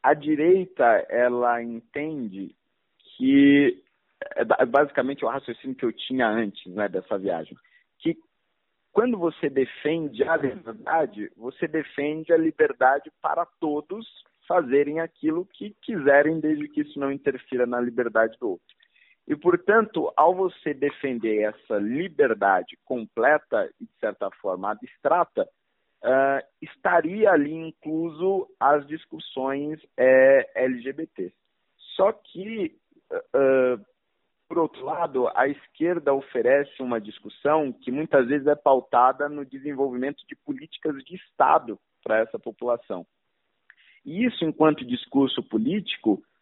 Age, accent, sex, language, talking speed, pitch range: 50-69, Brazilian, male, Portuguese, 120 wpm, 135-195 Hz